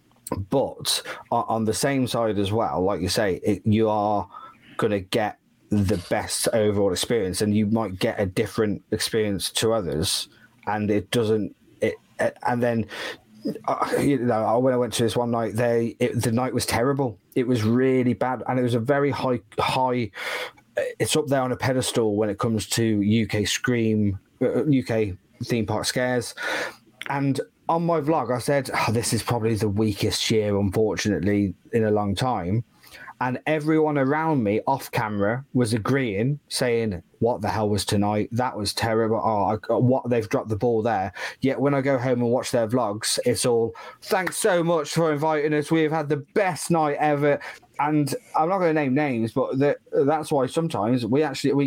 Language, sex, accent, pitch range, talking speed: English, male, British, 110-140 Hz, 180 wpm